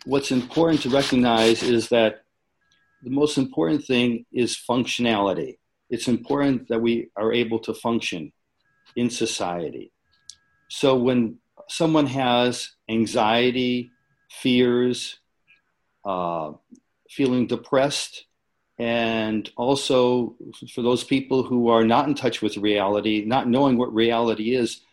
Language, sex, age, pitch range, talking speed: English, male, 50-69, 115-140 Hz, 115 wpm